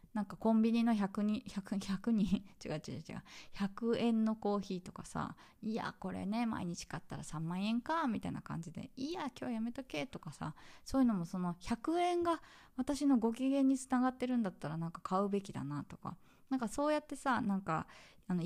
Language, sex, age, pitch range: Japanese, female, 20-39, 190-255 Hz